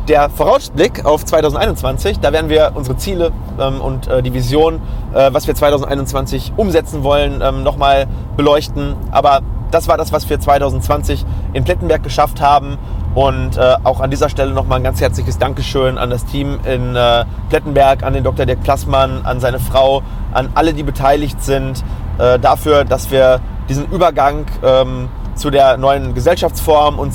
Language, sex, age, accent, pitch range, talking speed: German, male, 30-49, German, 115-145 Hz, 165 wpm